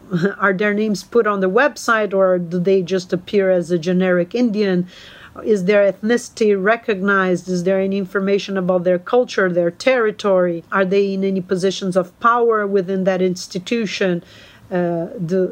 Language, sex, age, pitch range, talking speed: English, female, 40-59, 180-205 Hz, 160 wpm